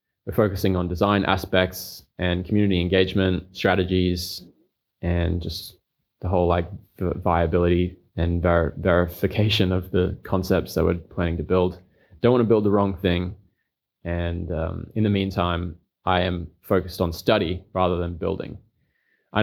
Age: 20-39